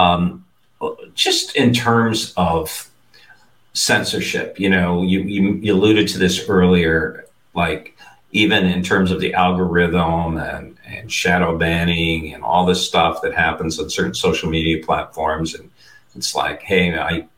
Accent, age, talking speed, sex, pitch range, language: American, 50-69, 145 wpm, male, 80-95 Hz, English